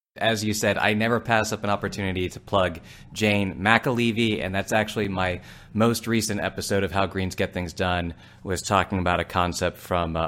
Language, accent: English, American